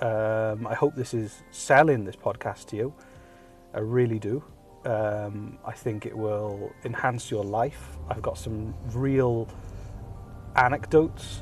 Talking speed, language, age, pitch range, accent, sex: 135 wpm, English, 30-49, 110-130 Hz, British, male